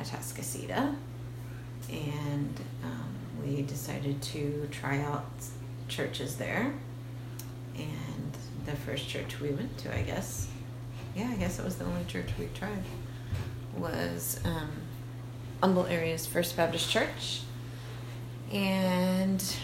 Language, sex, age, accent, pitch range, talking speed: English, female, 30-49, American, 120-145 Hz, 115 wpm